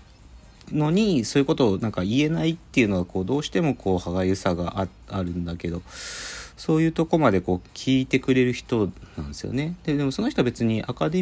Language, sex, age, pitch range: Japanese, male, 40-59, 85-125 Hz